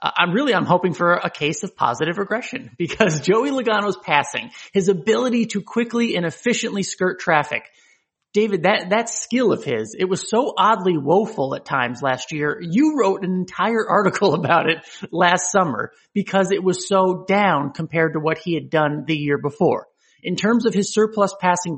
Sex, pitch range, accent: male, 165-210 Hz, American